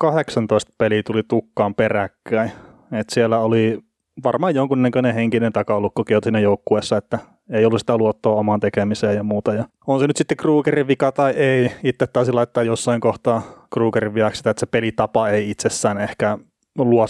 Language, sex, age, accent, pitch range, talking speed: Finnish, male, 30-49, native, 105-120 Hz, 160 wpm